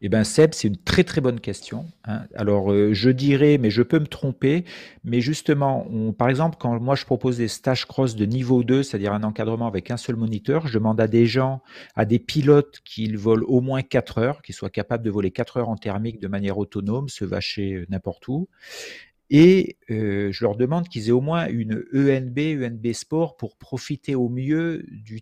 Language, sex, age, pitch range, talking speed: French, male, 40-59, 110-145 Hz, 205 wpm